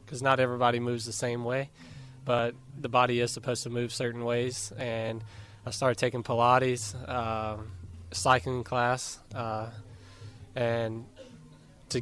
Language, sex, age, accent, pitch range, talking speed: English, male, 20-39, American, 115-125 Hz, 135 wpm